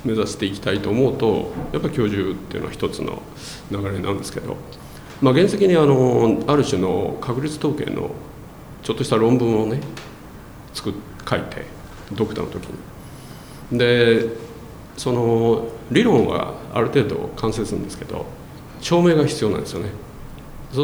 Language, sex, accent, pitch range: Japanese, male, native, 115-145 Hz